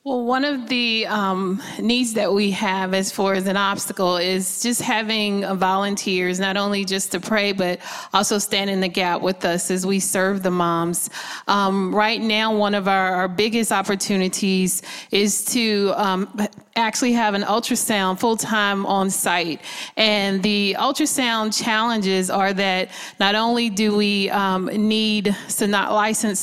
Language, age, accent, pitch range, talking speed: English, 30-49, American, 195-220 Hz, 155 wpm